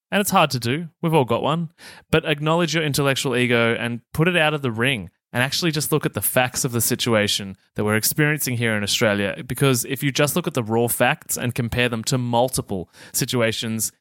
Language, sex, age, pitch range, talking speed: English, male, 20-39, 110-135 Hz, 225 wpm